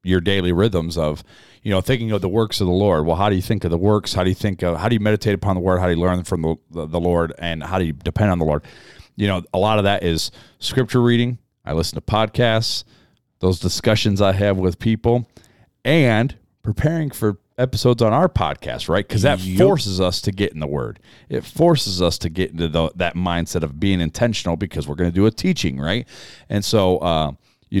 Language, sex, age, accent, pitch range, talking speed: English, male, 40-59, American, 85-110 Hz, 235 wpm